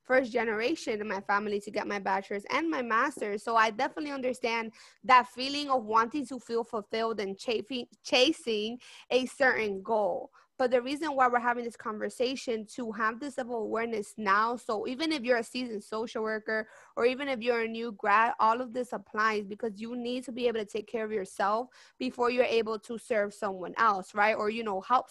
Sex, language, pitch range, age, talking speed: female, English, 215-250 Hz, 20-39, 205 wpm